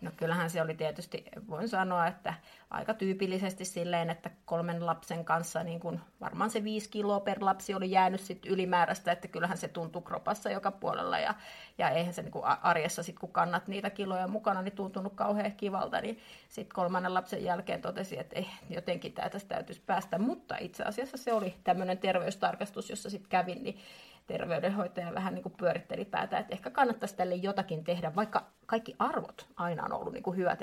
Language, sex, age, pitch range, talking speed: English, female, 30-49, 175-210 Hz, 180 wpm